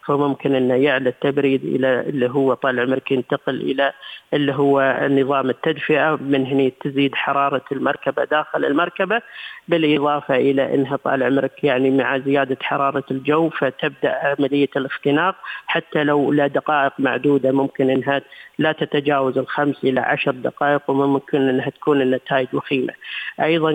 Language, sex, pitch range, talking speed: Arabic, female, 135-150 Hz, 135 wpm